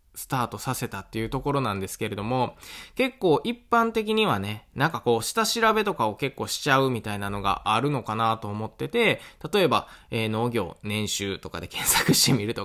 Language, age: Japanese, 20-39